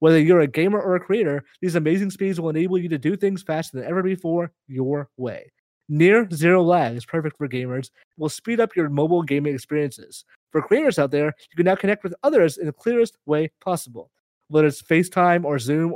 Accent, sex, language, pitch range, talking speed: American, male, English, 145-185 Hz, 215 wpm